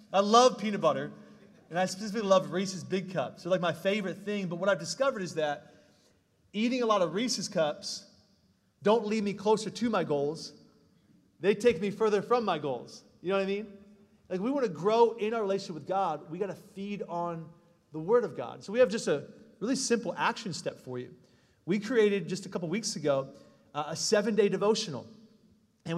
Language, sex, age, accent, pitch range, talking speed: English, male, 30-49, American, 170-215 Hz, 205 wpm